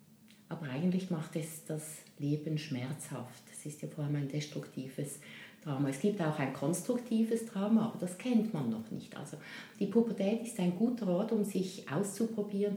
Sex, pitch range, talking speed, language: female, 150-215 Hz, 175 wpm, German